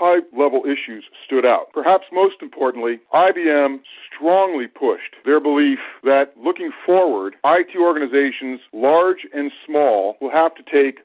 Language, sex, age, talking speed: English, male, 50-69, 130 wpm